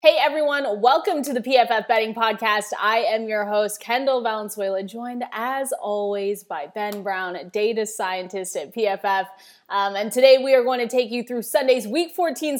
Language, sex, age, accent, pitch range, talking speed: English, female, 20-39, American, 205-255 Hz, 175 wpm